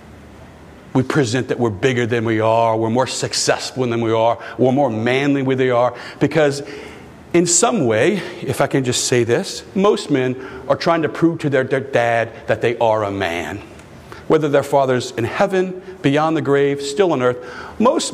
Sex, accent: male, American